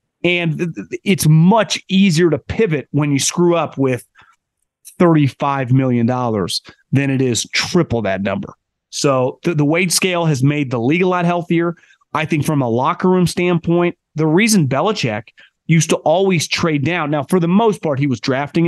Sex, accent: male, American